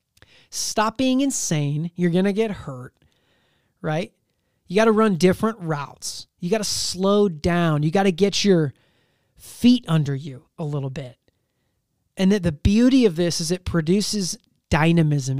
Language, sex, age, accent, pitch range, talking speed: English, male, 30-49, American, 155-210 Hz, 160 wpm